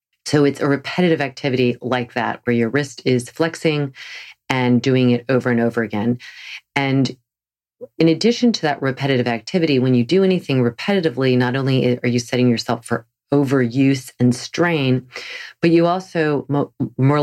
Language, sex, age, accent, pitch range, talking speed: English, female, 40-59, American, 120-140 Hz, 155 wpm